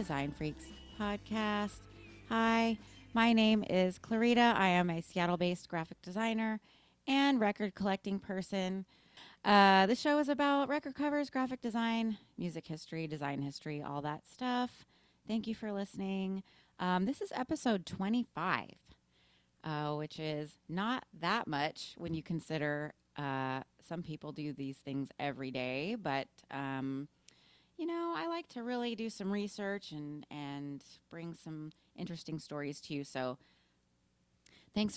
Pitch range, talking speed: 155-220 Hz, 140 wpm